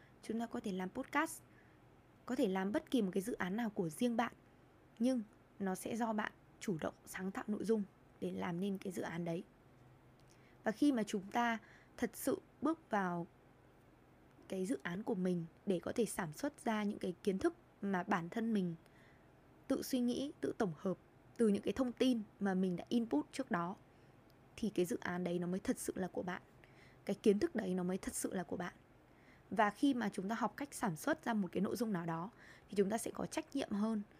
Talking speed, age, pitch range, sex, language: 225 wpm, 20-39, 180-235 Hz, female, Vietnamese